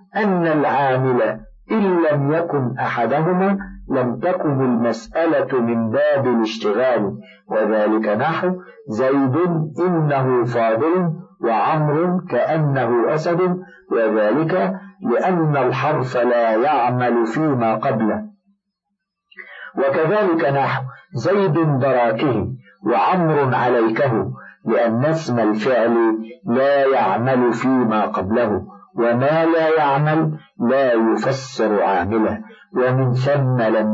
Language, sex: Arabic, male